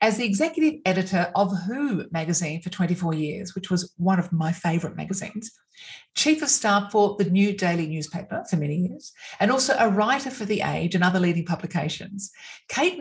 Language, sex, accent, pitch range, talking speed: English, female, Australian, 175-225 Hz, 185 wpm